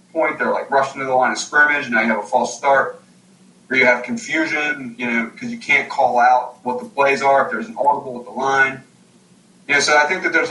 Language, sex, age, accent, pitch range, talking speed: English, male, 20-39, American, 115-140 Hz, 250 wpm